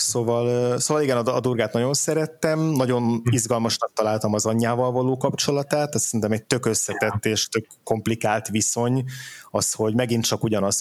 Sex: male